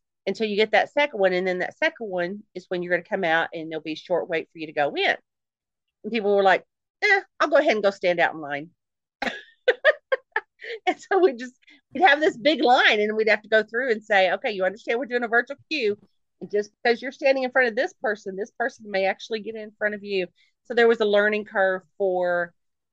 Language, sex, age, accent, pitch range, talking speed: English, female, 40-59, American, 175-230 Hz, 250 wpm